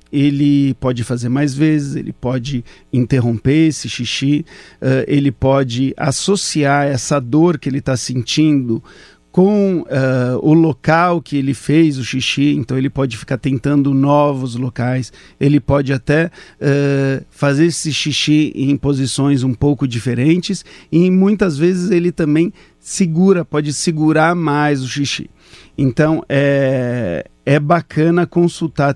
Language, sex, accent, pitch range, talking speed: English, male, Brazilian, 130-160 Hz, 125 wpm